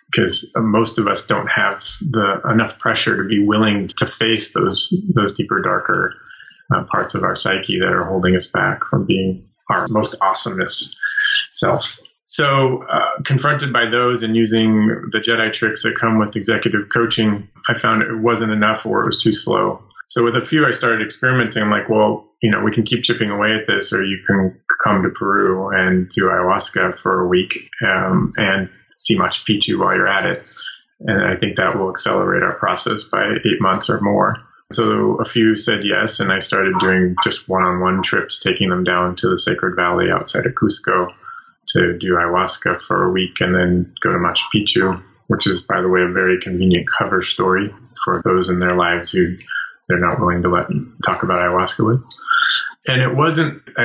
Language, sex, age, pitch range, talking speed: English, male, 30-49, 95-120 Hz, 195 wpm